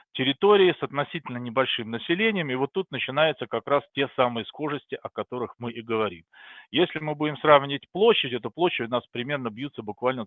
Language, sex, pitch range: Russian, male, 110-140 Hz